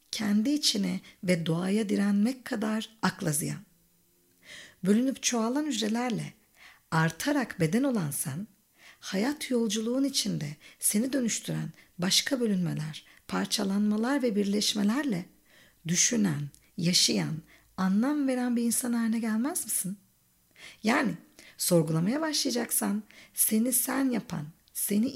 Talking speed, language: 95 wpm, Turkish